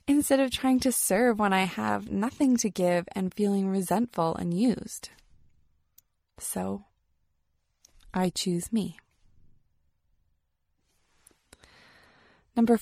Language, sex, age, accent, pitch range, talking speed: English, female, 20-39, American, 155-215 Hz, 100 wpm